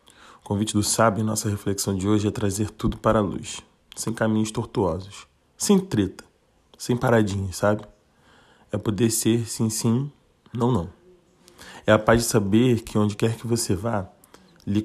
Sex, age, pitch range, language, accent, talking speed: male, 20-39, 105-120 Hz, Portuguese, Brazilian, 160 wpm